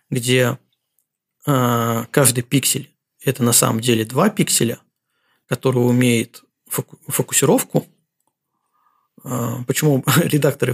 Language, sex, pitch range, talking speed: Russian, male, 125-155 Hz, 85 wpm